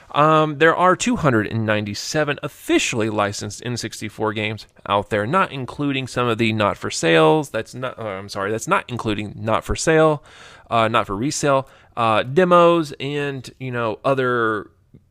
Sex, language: male, English